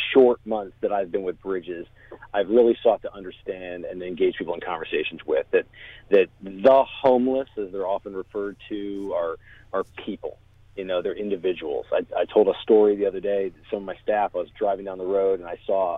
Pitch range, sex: 105-150 Hz, male